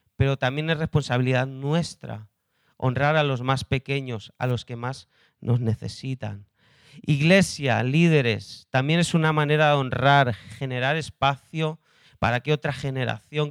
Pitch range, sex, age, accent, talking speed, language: 125-155 Hz, male, 40-59, Spanish, 135 wpm, Spanish